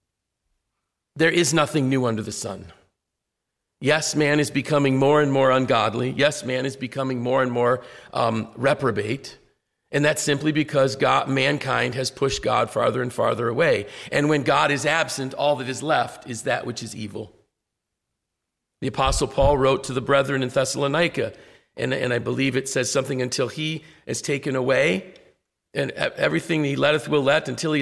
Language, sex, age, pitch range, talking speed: English, male, 40-59, 125-150 Hz, 170 wpm